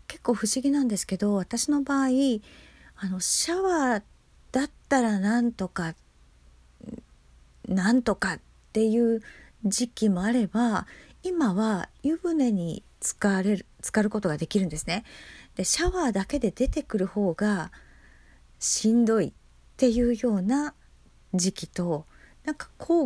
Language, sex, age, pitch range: Japanese, female, 40-59, 170-250 Hz